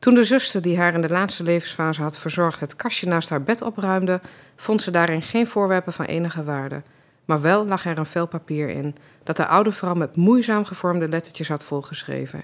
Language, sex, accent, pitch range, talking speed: Dutch, female, Dutch, 150-195 Hz, 205 wpm